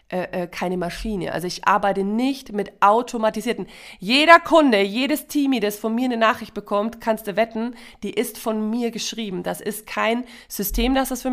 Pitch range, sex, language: 185-220 Hz, female, German